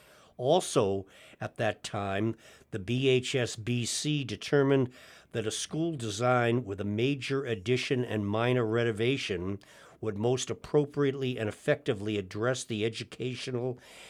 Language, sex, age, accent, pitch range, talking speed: English, male, 50-69, American, 105-130 Hz, 110 wpm